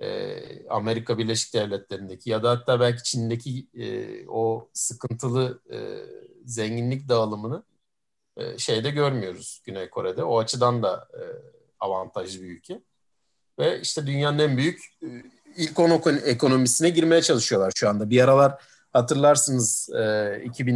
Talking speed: 125 wpm